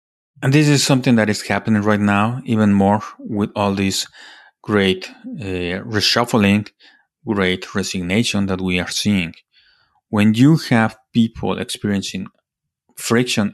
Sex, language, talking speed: male, English, 130 wpm